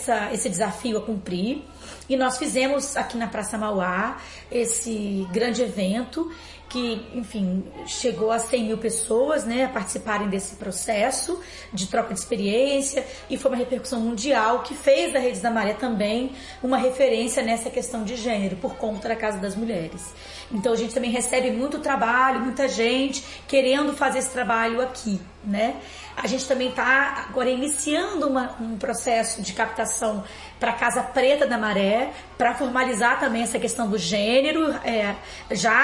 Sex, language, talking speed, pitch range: female, Portuguese, 160 wpm, 220-260 Hz